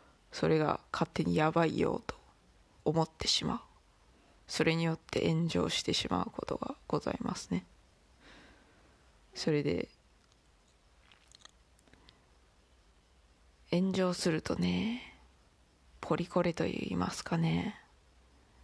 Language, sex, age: Japanese, female, 20-39